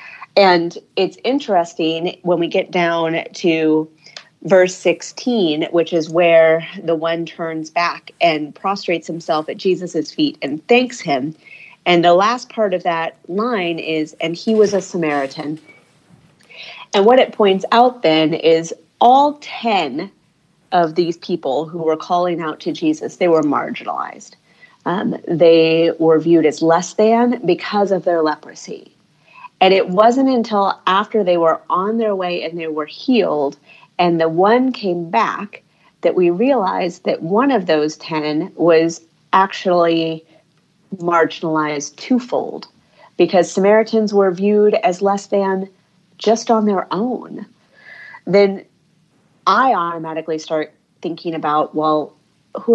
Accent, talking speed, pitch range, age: American, 140 wpm, 160-205 Hz, 30-49